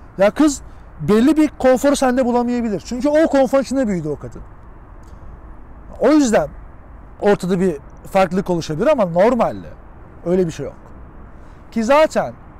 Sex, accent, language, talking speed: male, native, Turkish, 135 wpm